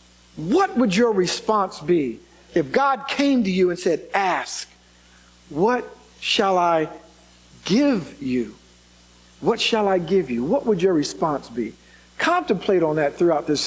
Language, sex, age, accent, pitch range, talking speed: English, male, 50-69, American, 180-245 Hz, 145 wpm